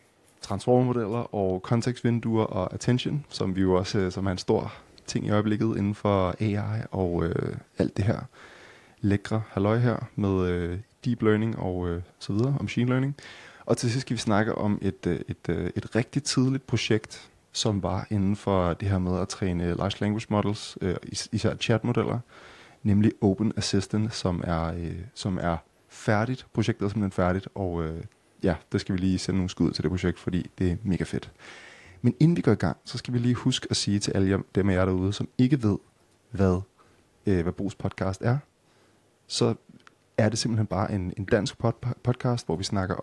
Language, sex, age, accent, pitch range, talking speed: Danish, male, 20-39, native, 95-115 Hz, 195 wpm